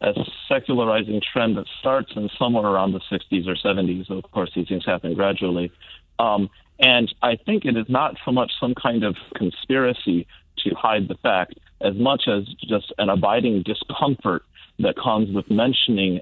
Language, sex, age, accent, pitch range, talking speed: English, male, 40-59, American, 90-110 Hz, 170 wpm